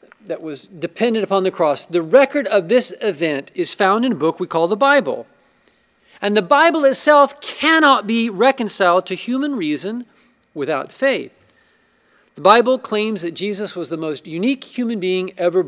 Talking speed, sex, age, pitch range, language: 170 wpm, male, 40-59, 175-235 Hz, English